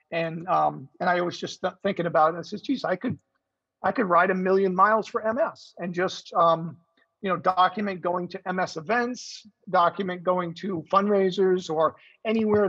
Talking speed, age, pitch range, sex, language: 185 wpm, 40-59, 170-195 Hz, male, English